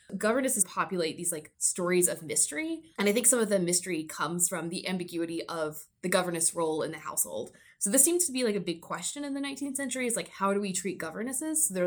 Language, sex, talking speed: English, female, 235 wpm